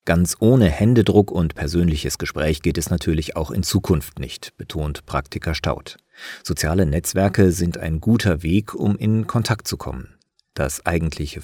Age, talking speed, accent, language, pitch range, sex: 40-59, 150 wpm, German, German, 80-110 Hz, male